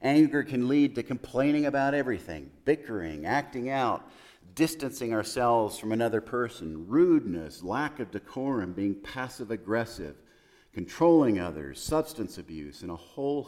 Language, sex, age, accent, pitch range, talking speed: English, male, 50-69, American, 95-135 Hz, 125 wpm